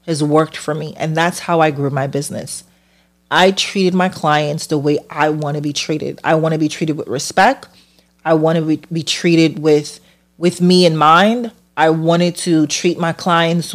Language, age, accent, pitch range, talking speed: English, 30-49, American, 150-180 Hz, 195 wpm